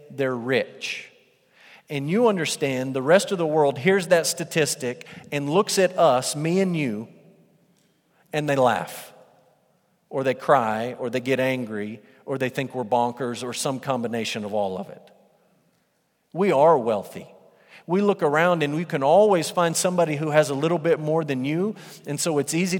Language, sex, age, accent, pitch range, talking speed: English, male, 40-59, American, 130-170 Hz, 175 wpm